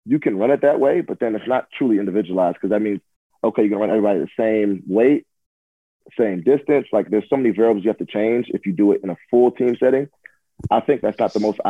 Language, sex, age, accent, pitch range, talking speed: English, male, 30-49, American, 100-115 Hz, 255 wpm